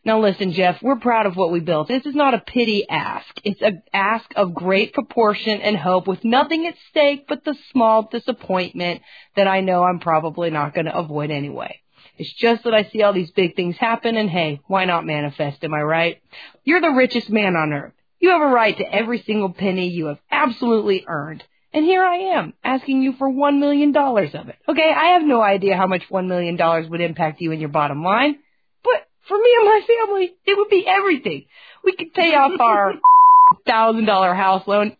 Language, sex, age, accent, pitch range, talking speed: English, female, 40-59, American, 185-290 Hz, 205 wpm